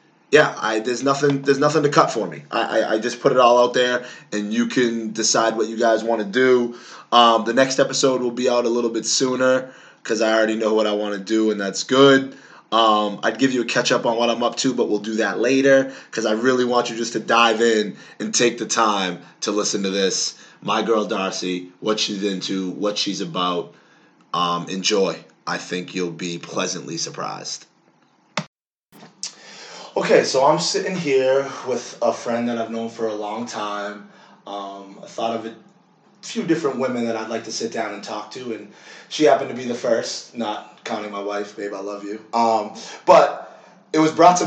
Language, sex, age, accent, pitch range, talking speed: English, male, 30-49, American, 105-130 Hz, 210 wpm